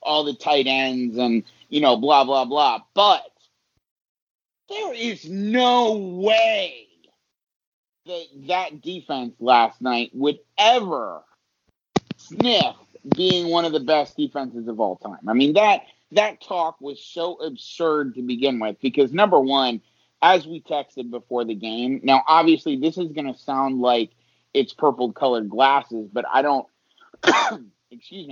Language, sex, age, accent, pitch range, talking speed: English, male, 30-49, American, 120-185 Hz, 140 wpm